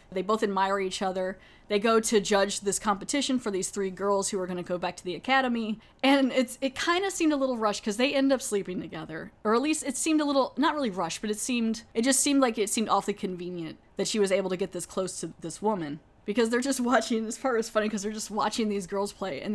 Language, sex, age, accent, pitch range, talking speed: English, female, 10-29, American, 185-225 Hz, 265 wpm